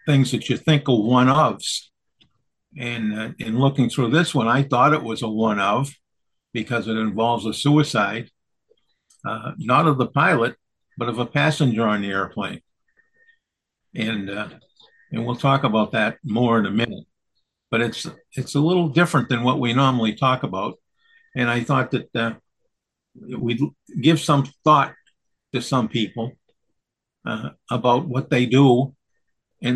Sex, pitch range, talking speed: male, 115-140 Hz, 155 wpm